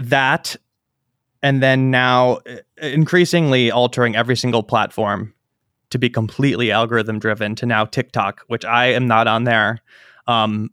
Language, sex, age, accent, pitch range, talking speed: English, male, 20-39, American, 115-130 Hz, 135 wpm